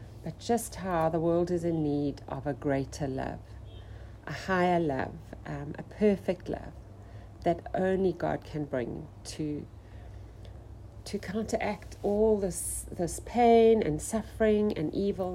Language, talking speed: English, 135 wpm